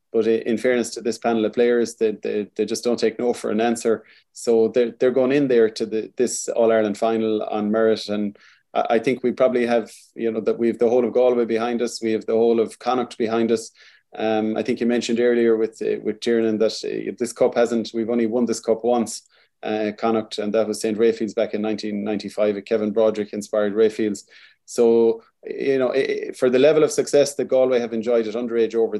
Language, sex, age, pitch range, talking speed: English, male, 20-39, 110-120 Hz, 215 wpm